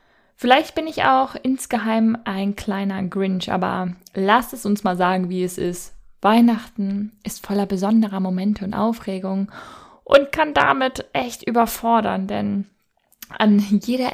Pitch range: 190-225 Hz